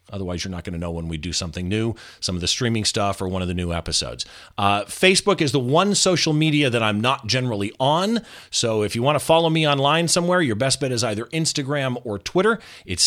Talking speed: 240 wpm